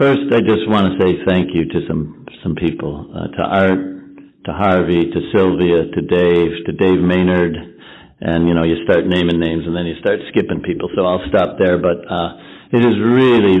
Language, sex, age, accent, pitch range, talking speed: English, male, 60-79, American, 85-100 Hz, 205 wpm